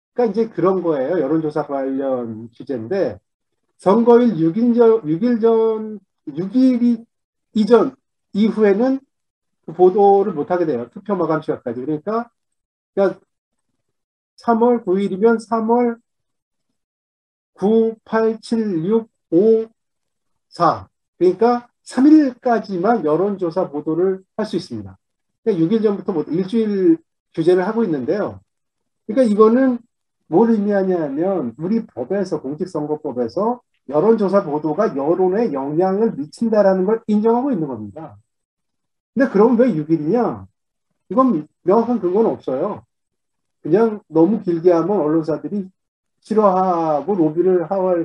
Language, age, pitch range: Korean, 40-59, 155-225 Hz